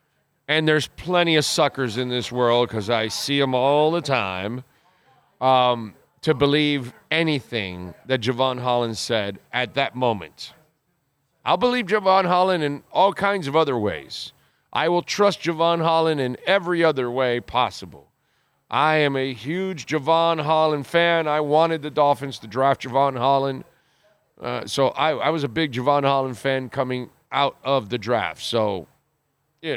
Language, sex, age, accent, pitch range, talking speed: English, male, 40-59, American, 130-170 Hz, 155 wpm